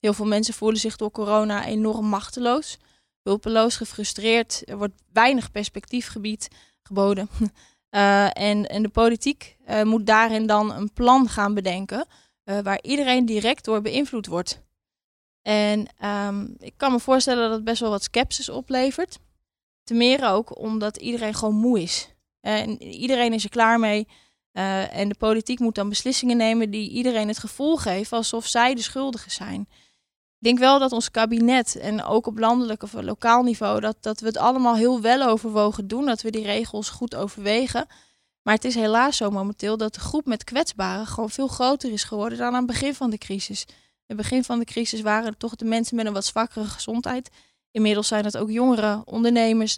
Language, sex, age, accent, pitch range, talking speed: Dutch, female, 20-39, Dutch, 210-245 Hz, 185 wpm